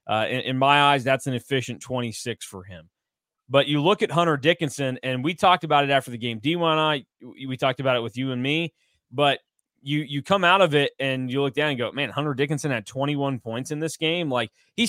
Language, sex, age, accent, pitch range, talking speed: English, male, 20-39, American, 125-160 Hz, 240 wpm